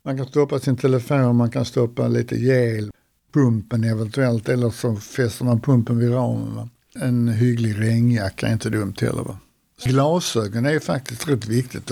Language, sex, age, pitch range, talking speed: Swedish, male, 60-79, 115-135 Hz, 160 wpm